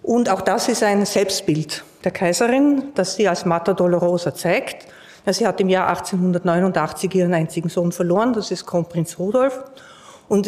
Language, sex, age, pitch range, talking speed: German, female, 50-69, 180-220 Hz, 160 wpm